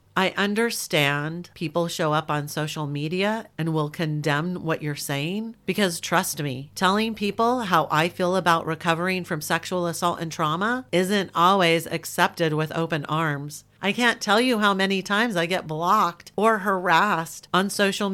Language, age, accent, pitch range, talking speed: English, 40-59, American, 150-190 Hz, 160 wpm